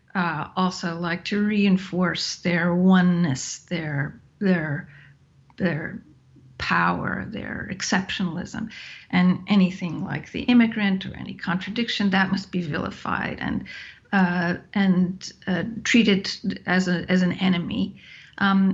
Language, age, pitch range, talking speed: English, 50-69, 175-205 Hz, 115 wpm